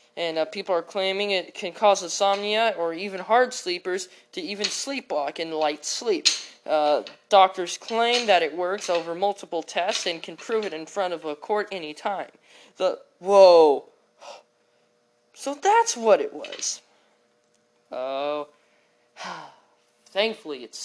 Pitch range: 155-225 Hz